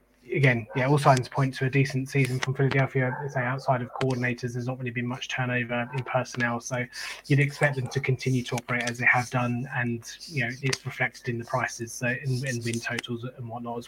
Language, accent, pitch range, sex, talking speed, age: English, British, 120-135 Hz, male, 225 wpm, 20-39